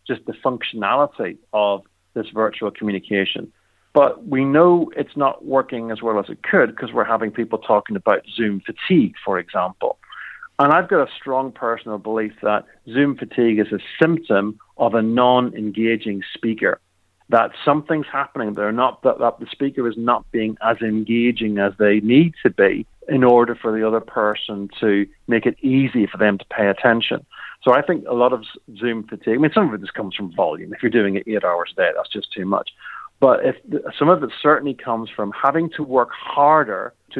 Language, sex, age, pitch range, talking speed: English, male, 50-69, 105-130 Hz, 190 wpm